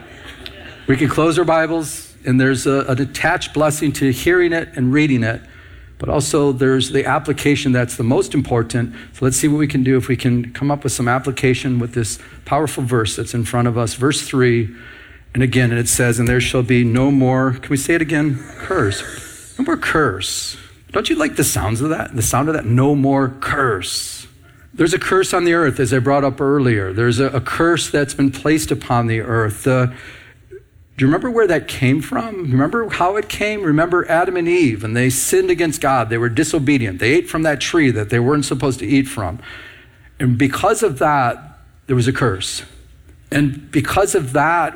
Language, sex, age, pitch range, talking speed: English, male, 50-69, 120-150 Hz, 210 wpm